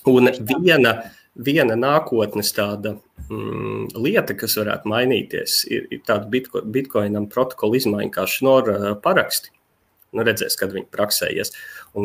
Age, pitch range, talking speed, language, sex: 30-49, 105-135 Hz, 125 wpm, English, male